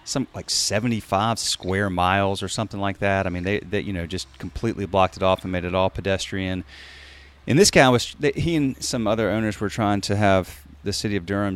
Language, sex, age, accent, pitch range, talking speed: English, male, 30-49, American, 90-115 Hz, 220 wpm